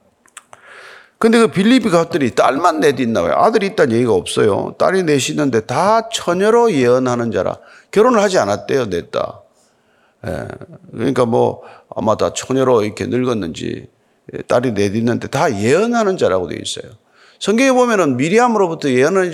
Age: 40-59